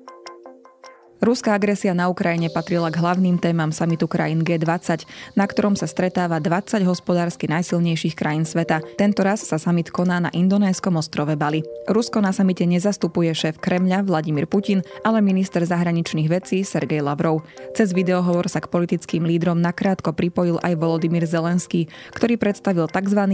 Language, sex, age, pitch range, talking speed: Slovak, female, 20-39, 165-190 Hz, 145 wpm